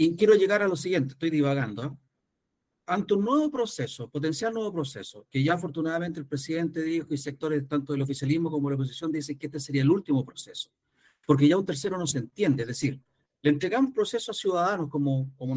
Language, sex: Spanish, male